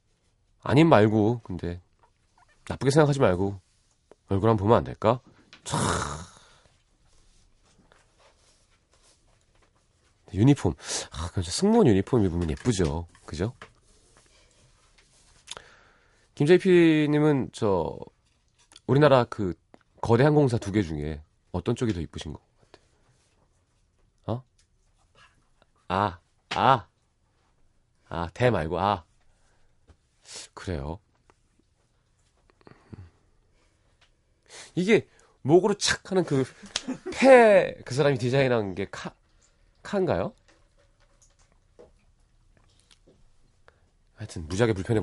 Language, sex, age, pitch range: Korean, male, 30-49, 90-125 Hz